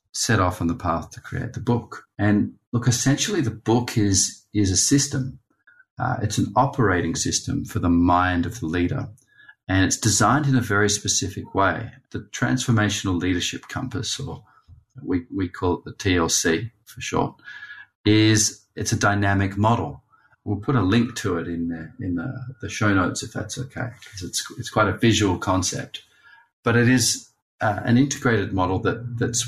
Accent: Australian